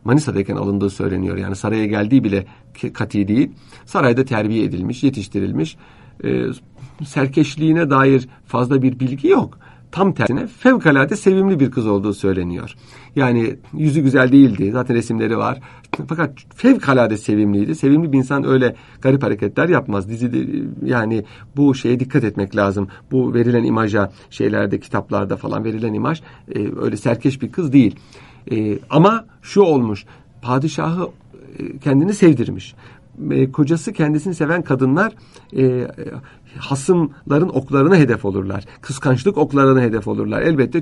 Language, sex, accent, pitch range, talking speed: Turkish, male, native, 115-150 Hz, 130 wpm